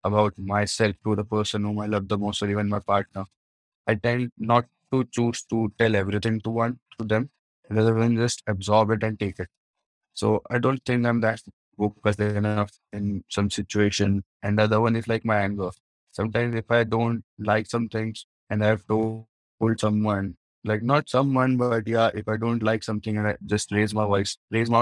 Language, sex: English, male